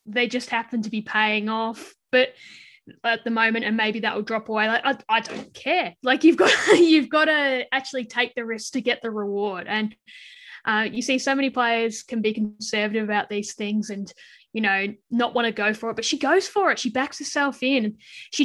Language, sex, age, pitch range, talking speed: English, female, 10-29, 215-255 Hz, 220 wpm